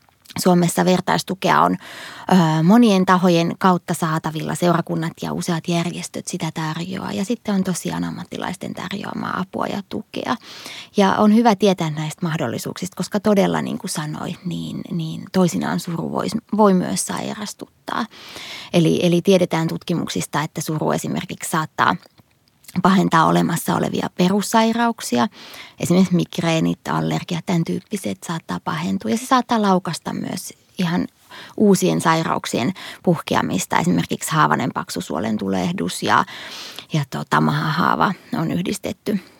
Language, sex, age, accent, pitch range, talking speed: Finnish, female, 20-39, native, 165-200 Hz, 120 wpm